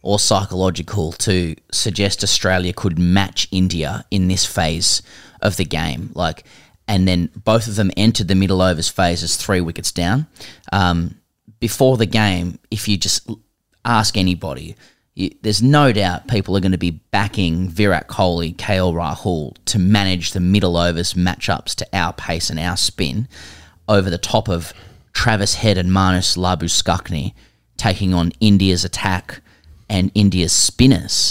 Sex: male